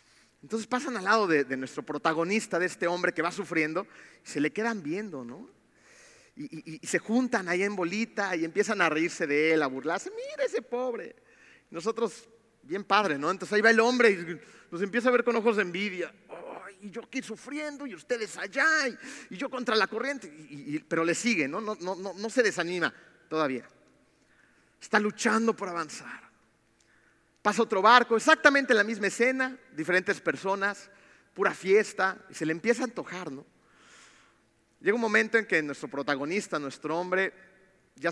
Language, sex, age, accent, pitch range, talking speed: Spanish, male, 40-59, Mexican, 165-230 Hz, 185 wpm